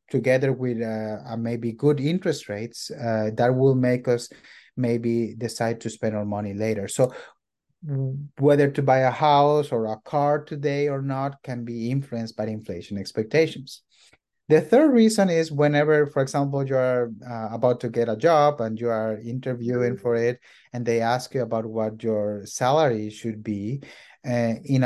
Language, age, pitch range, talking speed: English, 30-49, 115-140 Hz, 170 wpm